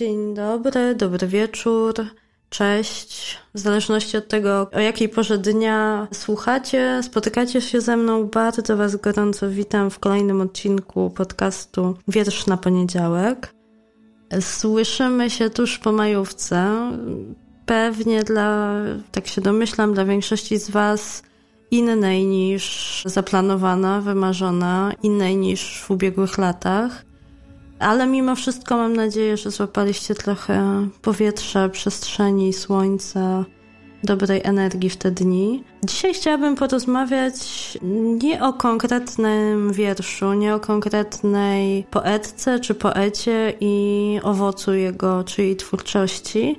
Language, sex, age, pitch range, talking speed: Polish, female, 20-39, 195-225 Hz, 110 wpm